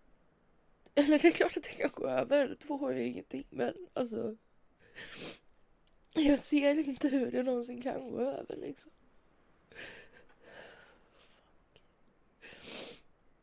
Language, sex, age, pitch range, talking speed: Swedish, female, 20-39, 225-290 Hz, 120 wpm